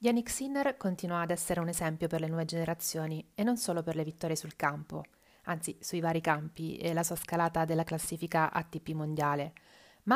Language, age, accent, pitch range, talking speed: Italian, 30-49, native, 160-190 Hz, 190 wpm